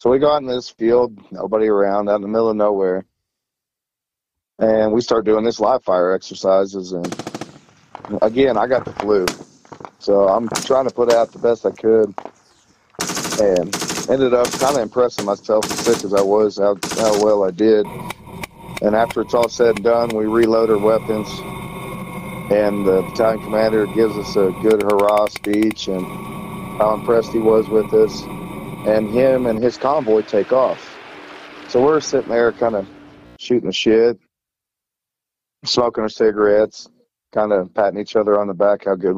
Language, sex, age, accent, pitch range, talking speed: English, male, 50-69, American, 100-115 Hz, 170 wpm